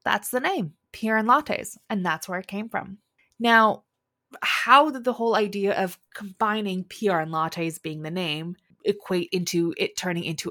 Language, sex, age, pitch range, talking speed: English, female, 20-39, 165-220 Hz, 175 wpm